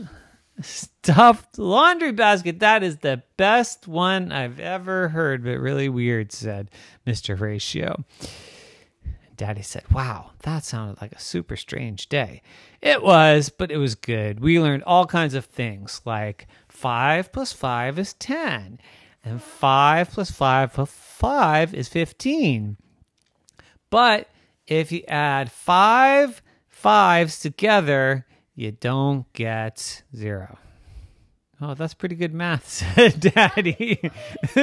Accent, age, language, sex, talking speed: American, 30-49, English, male, 125 wpm